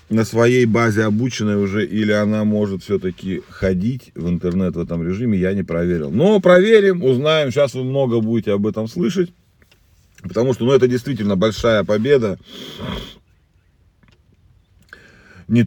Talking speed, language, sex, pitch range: 140 wpm, Russian, male, 90-120 Hz